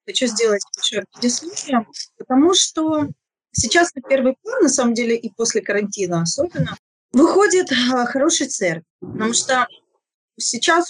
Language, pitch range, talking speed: Ukrainian, 200-260 Hz, 125 wpm